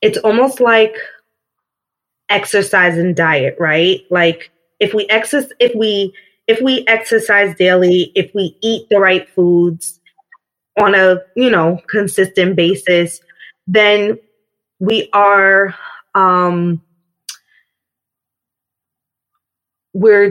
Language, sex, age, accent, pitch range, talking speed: English, female, 20-39, American, 175-220 Hz, 100 wpm